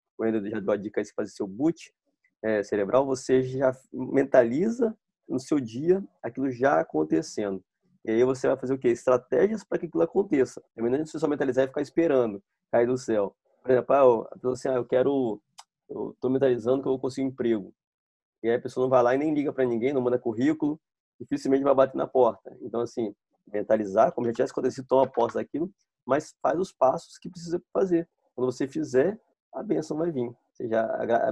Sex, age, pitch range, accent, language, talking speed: male, 20-39, 120-155 Hz, Brazilian, Portuguese, 205 wpm